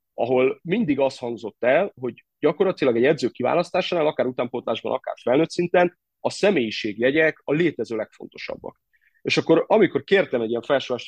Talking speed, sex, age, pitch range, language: 150 wpm, male, 30-49, 115-160 Hz, Hungarian